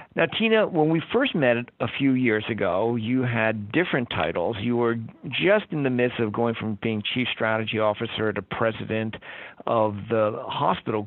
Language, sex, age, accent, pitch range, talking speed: English, male, 60-79, American, 115-140 Hz, 175 wpm